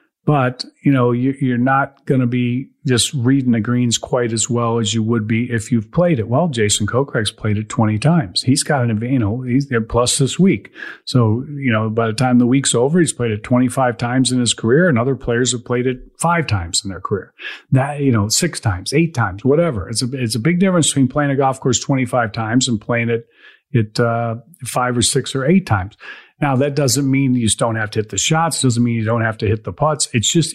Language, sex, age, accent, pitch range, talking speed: English, male, 40-59, American, 115-145 Hz, 245 wpm